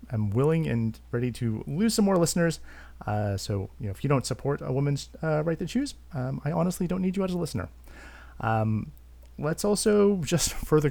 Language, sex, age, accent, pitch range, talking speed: English, male, 30-49, American, 115-165 Hz, 205 wpm